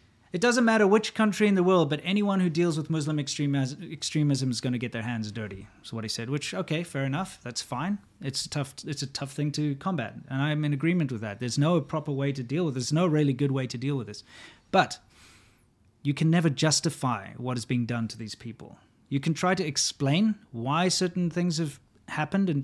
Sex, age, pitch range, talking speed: male, 30-49, 125-175 Hz, 230 wpm